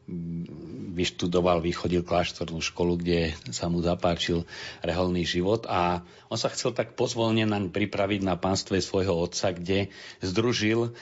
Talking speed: 130 wpm